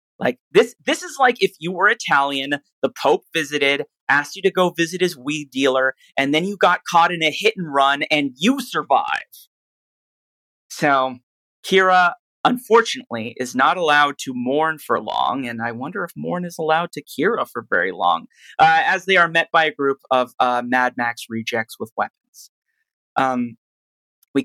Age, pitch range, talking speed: 30-49, 130-185 Hz, 170 wpm